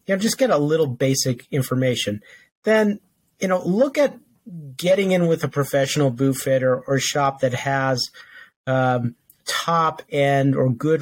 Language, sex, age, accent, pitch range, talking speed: English, male, 40-59, American, 130-155 Hz, 160 wpm